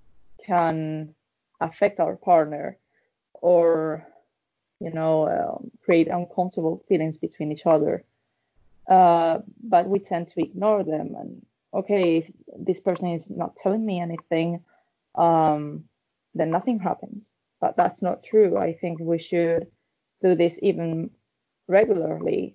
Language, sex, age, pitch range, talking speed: English, female, 20-39, 165-190 Hz, 125 wpm